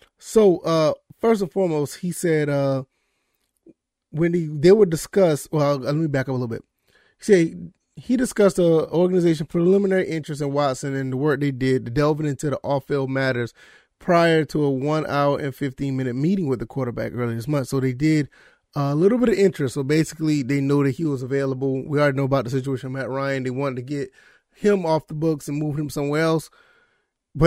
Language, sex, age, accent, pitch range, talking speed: English, male, 20-39, American, 135-165 Hz, 200 wpm